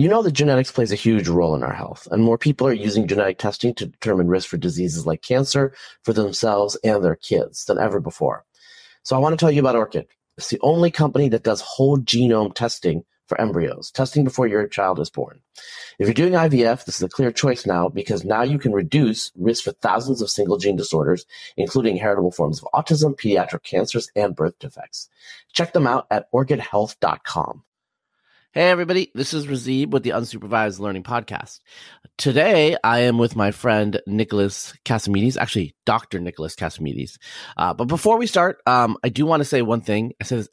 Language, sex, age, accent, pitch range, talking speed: English, male, 30-49, American, 100-135 Hz, 195 wpm